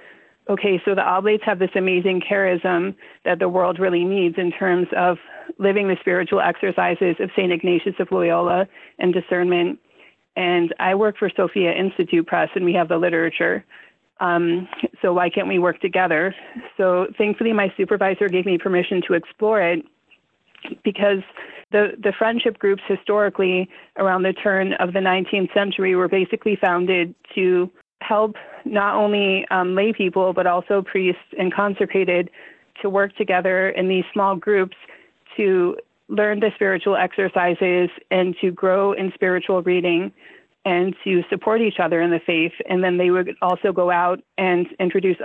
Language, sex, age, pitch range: English, female, 30-49, 180-200 Hz